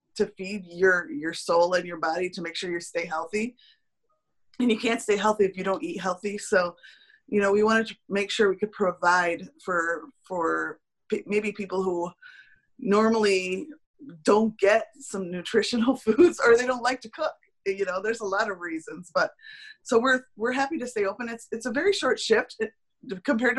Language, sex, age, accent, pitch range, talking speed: English, female, 20-39, American, 190-240 Hz, 190 wpm